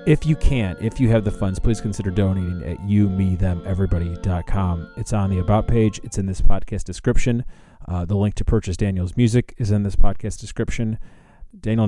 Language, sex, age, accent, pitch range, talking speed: English, male, 30-49, American, 90-110 Hz, 180 wpm